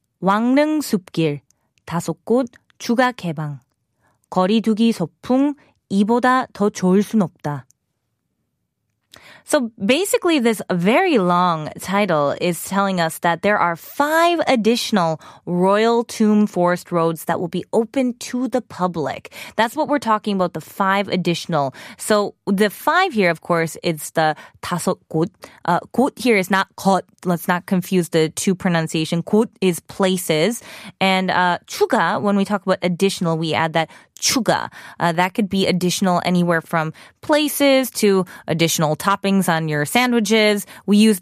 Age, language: 20-39, Korean